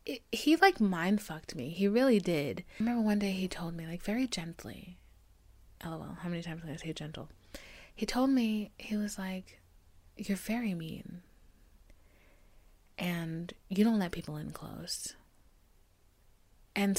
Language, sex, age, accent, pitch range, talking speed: English, female, 30-49, American, 165-220 Hz, 165 wpm